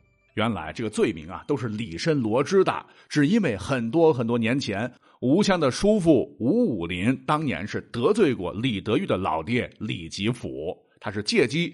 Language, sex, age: Chinese, male, 50-69